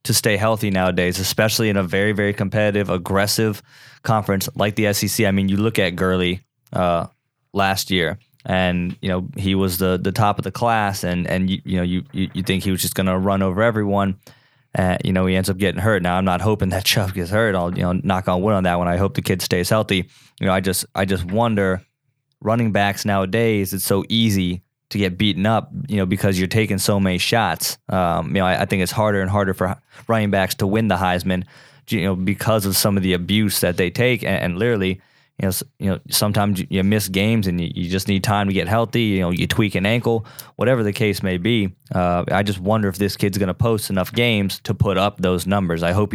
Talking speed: 245 wpm